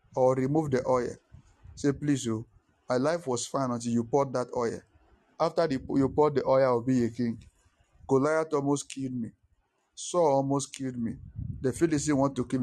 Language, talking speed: English, 190 wpm